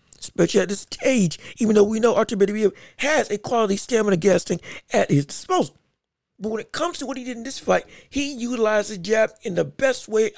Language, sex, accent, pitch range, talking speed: English, male, American, 195-285 Hz, 220 wpm